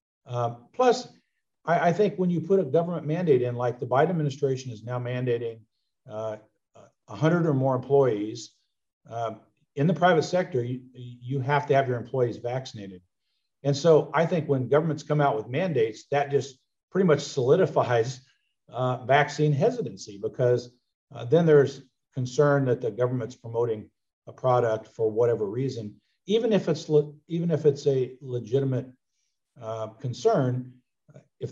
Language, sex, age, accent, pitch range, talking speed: English, male, 50-69, American, 120-150 Hz, 160 wpm